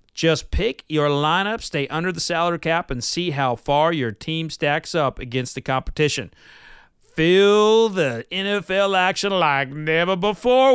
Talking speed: 150 wpm